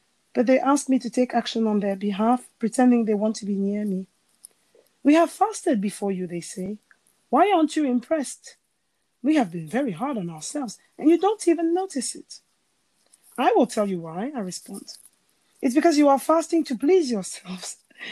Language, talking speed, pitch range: English, 185 wpm, 205-275 Hz